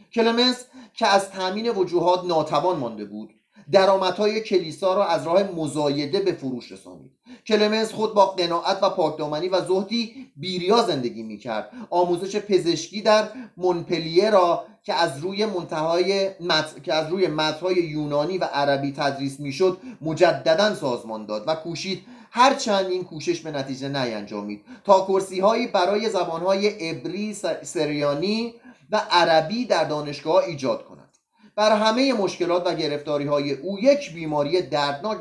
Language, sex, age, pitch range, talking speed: Persian, male, 30-49, 150-210 Hz, 140 wpm